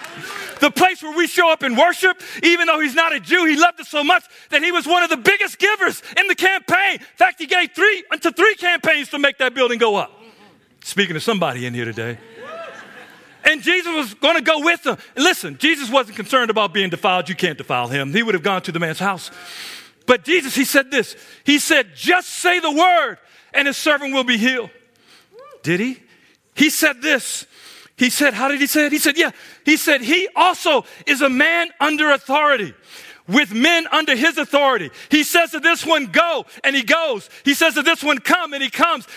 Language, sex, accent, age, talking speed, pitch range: English, male, American, 50-69, 220 wpm, 275-345 Hz